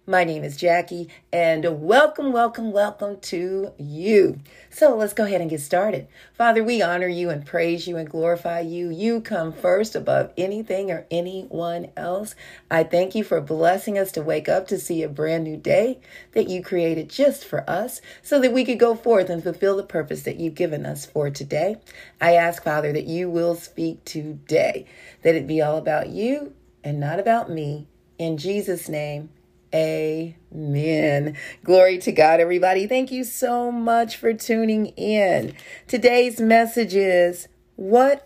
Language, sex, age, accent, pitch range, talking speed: English, female, 40-59, American, 160-220 Hz, 170 wpm